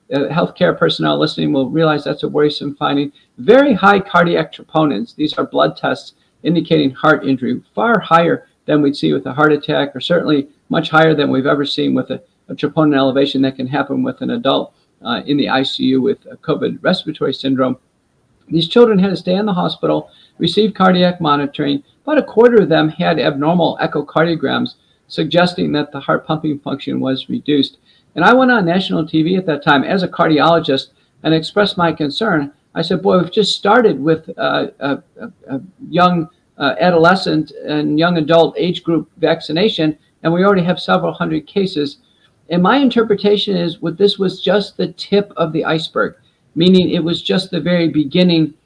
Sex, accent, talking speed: male, American, 180 wpm